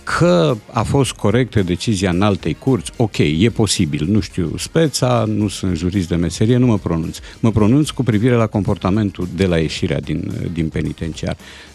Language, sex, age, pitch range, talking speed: Romanian, male, 50-69, 90-130 Hz, 175 wpm